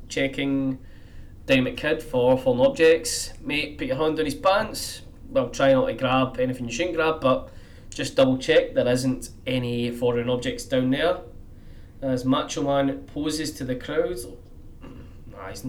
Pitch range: 105-140 Hz